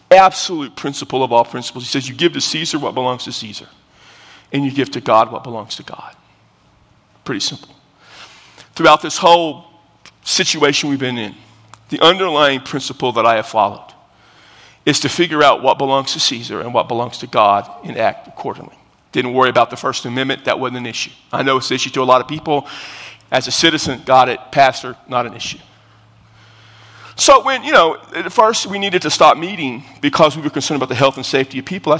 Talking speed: 205 wpm